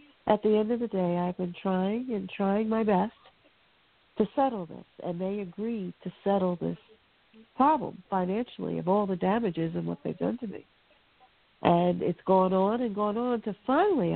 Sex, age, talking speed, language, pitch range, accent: female, 60-79, 180 wpm, English, 160-220 Hz, American